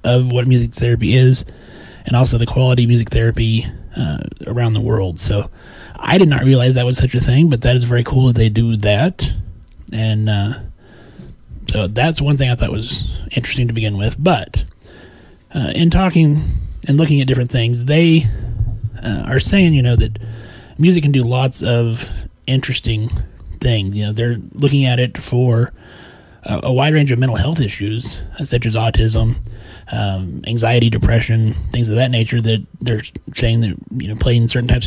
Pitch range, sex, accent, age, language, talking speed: 110-135 Hz, male, American, 30-49, English, 180 wpm